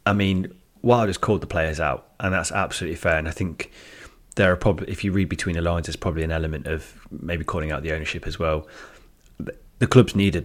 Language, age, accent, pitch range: English, 30-49, British, 80-95 Hz